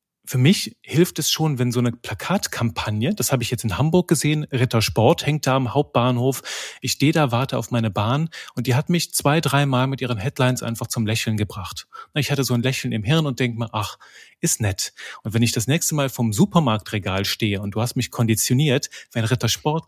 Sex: male